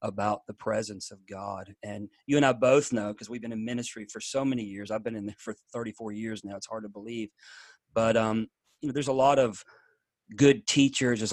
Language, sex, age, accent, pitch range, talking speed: English, male, 40-59, American, 110-125 Hz, 215 wpm